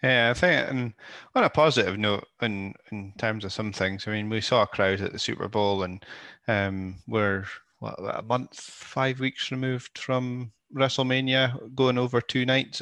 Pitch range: 90-105 Hz